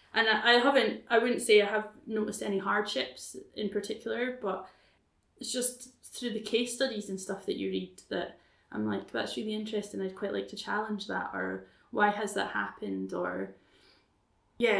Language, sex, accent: English, female, British